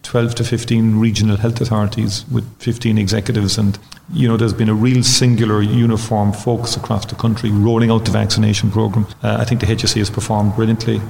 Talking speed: 185 wpm